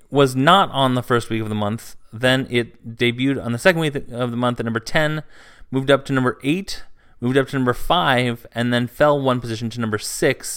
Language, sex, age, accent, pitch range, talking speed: English, male, 30-49, American, 115-135 Hz, 225 wpm